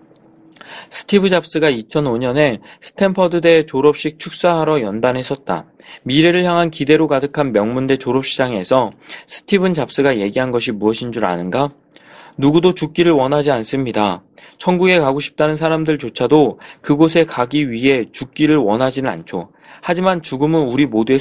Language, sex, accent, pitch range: Korean, male, native, 120-165 Hz